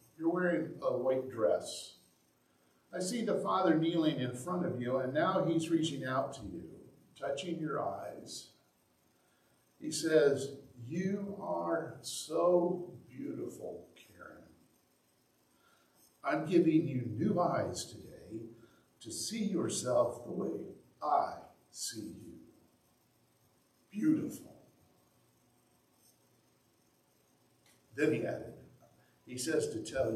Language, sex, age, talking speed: English, male, 50-69, 105 wpm